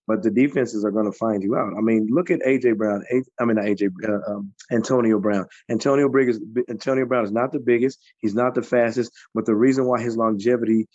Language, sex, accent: English, male, American